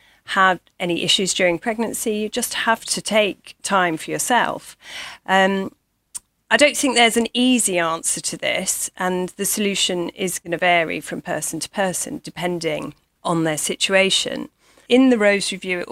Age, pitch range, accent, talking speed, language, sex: 40-59, 170-215 Hz, British, 160 wpm, English, female